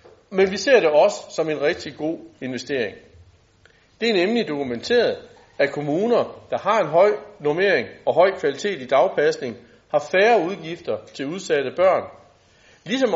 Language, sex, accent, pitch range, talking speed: Danish, male, native, 125-210 Hz, 150 wpm